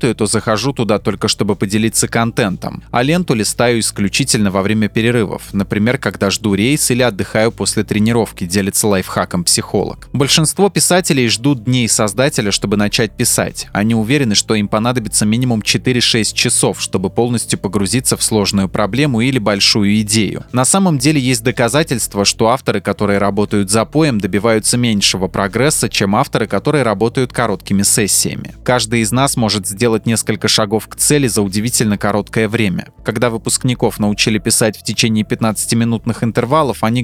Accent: native